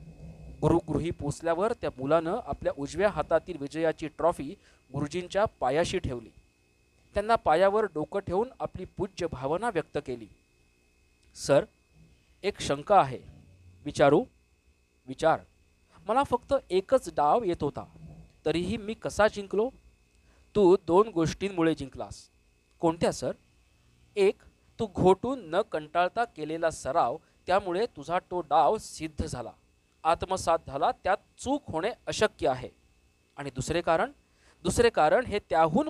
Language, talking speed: Marathi, 120 wpm